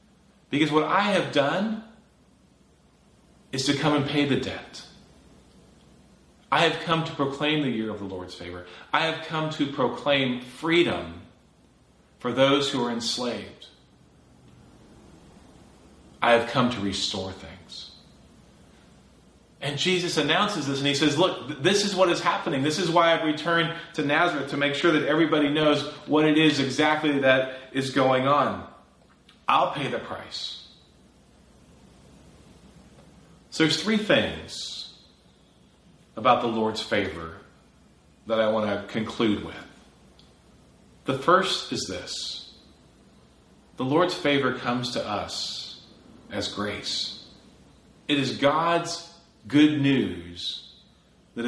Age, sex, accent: 30-49, male, American